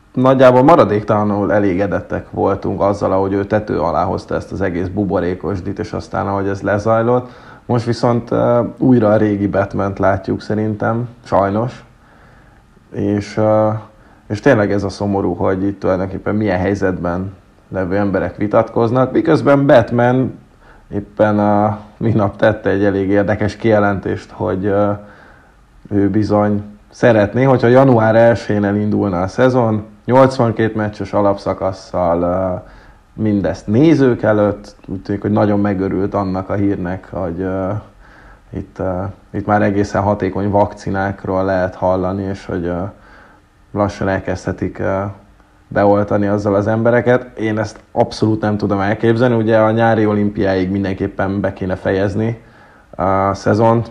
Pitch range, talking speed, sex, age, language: 95-110 Hz, 125 wpm, male, 30-49, Hungarian